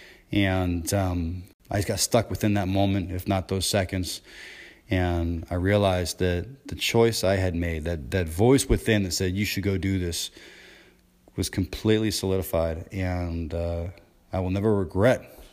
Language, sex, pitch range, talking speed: English, male, 95-120 Hz, 160 wpm